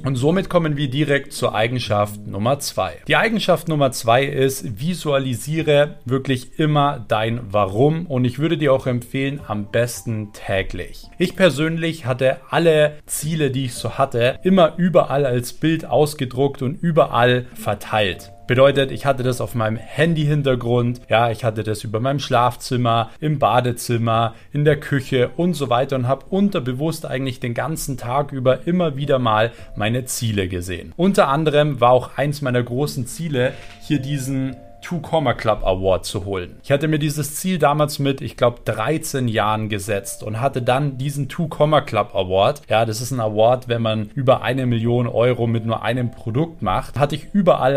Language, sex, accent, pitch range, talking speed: German, male, German, 115-145 Hz, 170 wpm